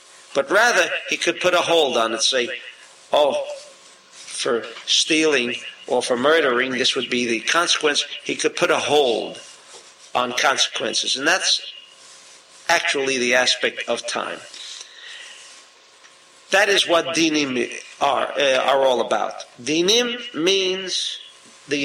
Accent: American